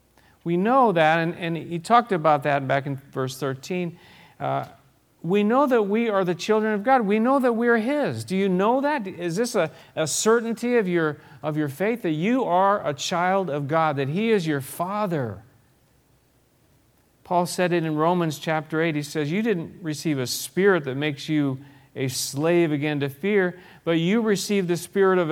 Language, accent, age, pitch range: English, American, 50-69, 140-210 Hz